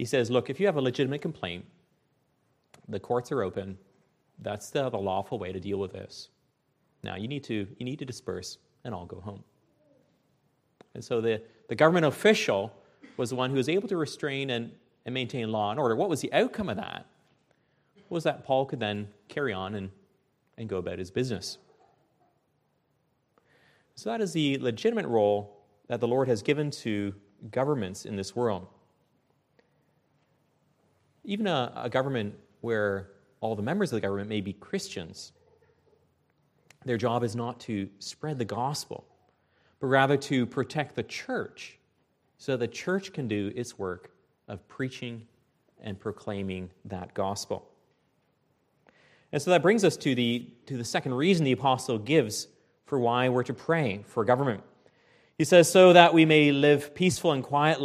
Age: 30-49